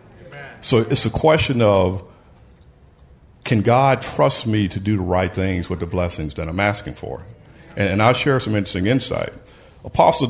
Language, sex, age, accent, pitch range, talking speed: English, male, 50-69, American, 90-115 Hz, 170 wpm